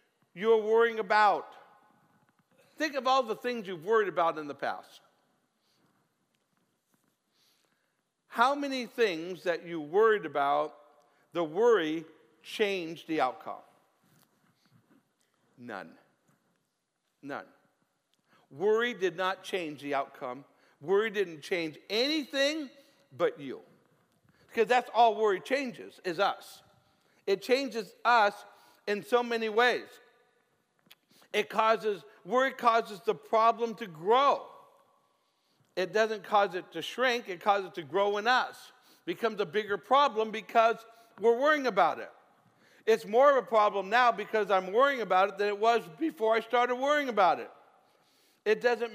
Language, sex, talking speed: English, male, 130 wpm